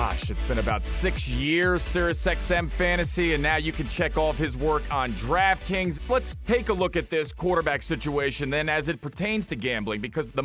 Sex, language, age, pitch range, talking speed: male, English, 30-49, 140-190 Hz, 200 wpm